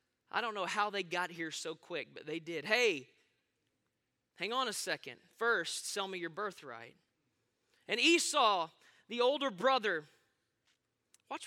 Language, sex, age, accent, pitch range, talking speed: English, male, 20-39, American, 210-345 Hz, 145 wpm